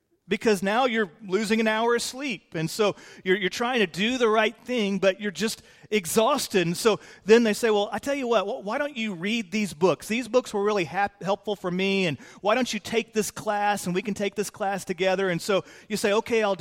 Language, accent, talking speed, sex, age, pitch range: English, American, 240 wpm, male, 40-59, 185-215 Hz